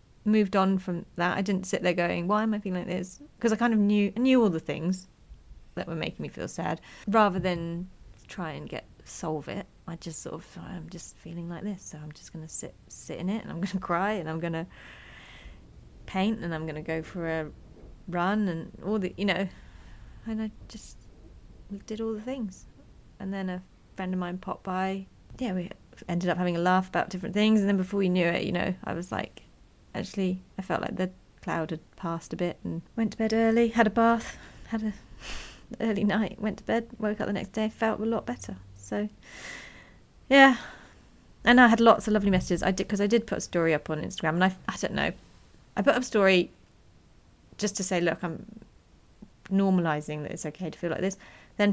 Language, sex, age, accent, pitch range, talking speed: English, female, 30-49, British, 165-205 Hz, 220 wpm